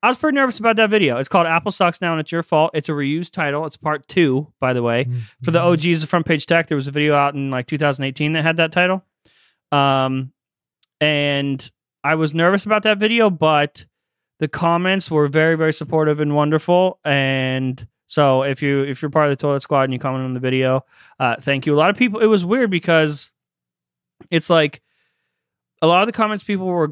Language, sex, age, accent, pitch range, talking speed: English, male, 30-49, American, 140-185 Hz, 220 wpm